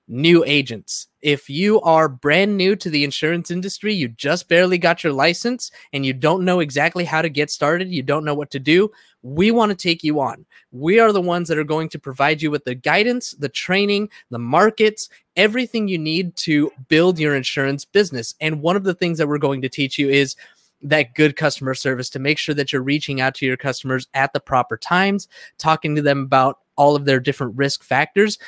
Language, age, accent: English, 20-39, American